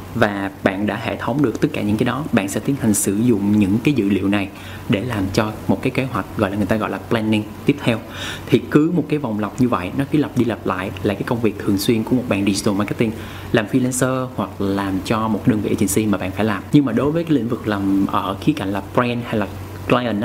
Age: 20-39